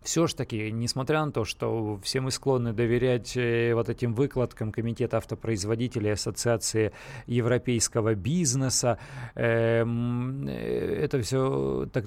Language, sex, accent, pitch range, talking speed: Russian, male, native, 115-140 Hz, 120 wpm